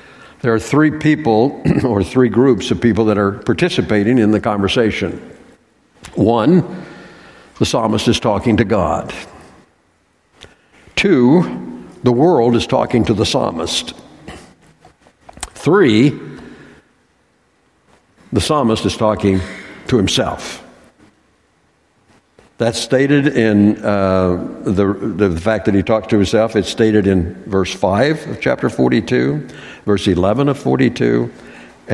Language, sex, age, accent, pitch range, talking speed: English, male, 60-79, American, 100-125 Hz, 115 wpm